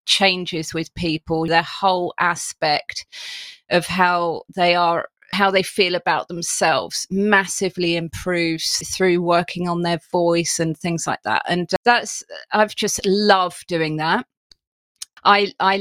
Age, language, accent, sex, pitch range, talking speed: 30-49, English, British, female, 170-210 Hz, 130 wpm